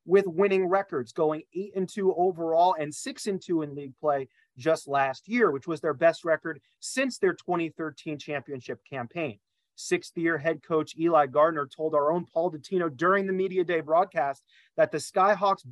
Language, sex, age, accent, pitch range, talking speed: English, male, 30-49, American, 150-195 Hz, 170 wpm